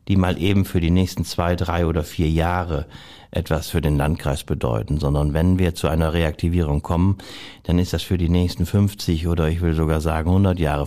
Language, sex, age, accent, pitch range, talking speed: German, male, 60-79, German, 85-105 Hz, 205 wpm